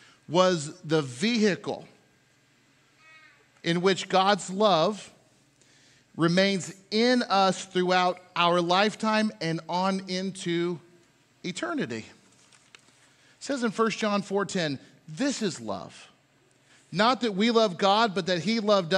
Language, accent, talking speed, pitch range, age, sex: English, American, 115 wpm, 160-225 Hz, 40-59, male